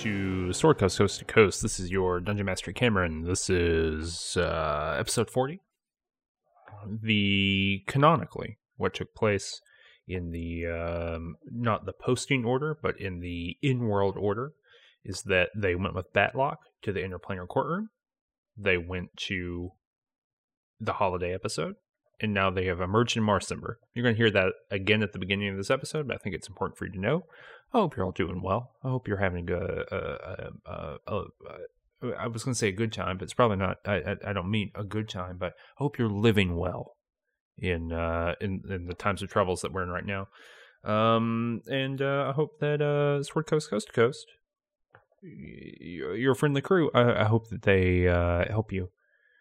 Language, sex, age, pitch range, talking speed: English, male, 30-49, 95-130 Hz, 190 wpm